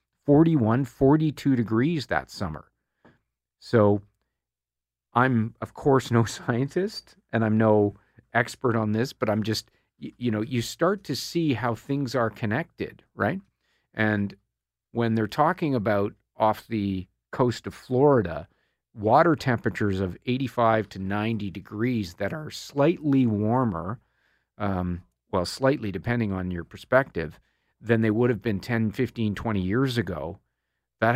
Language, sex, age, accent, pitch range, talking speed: English, male, 50-69, American, 100-125 Hz, 135 wpm